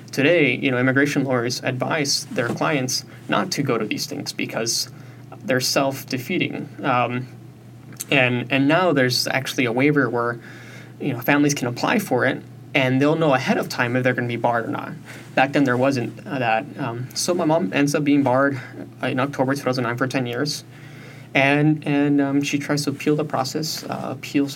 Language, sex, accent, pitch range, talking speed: English, male, American, 120-140 Hz, 190 wpm